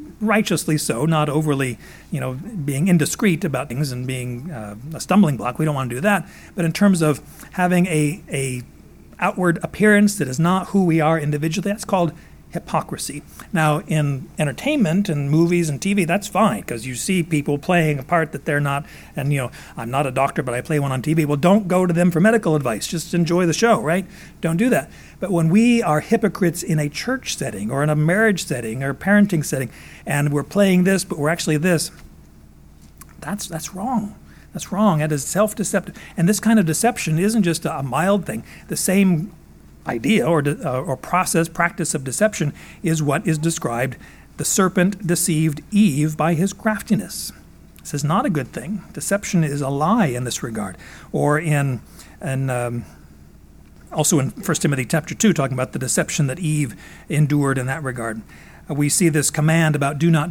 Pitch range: 145-185 Hz